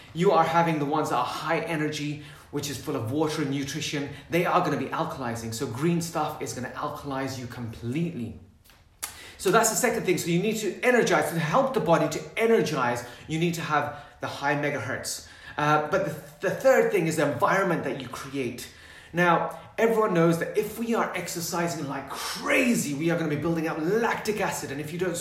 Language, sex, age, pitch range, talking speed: English, male, 30-49, 145-185 Hz, 205 wpm